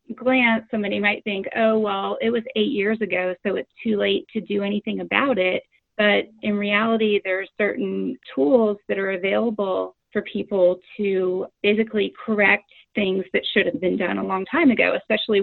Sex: female